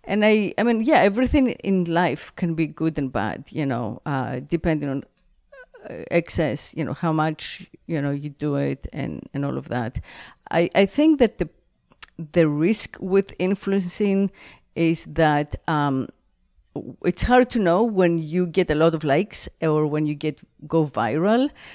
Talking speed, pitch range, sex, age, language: 170 wpm, 155-200 Hz, female, 50-69, English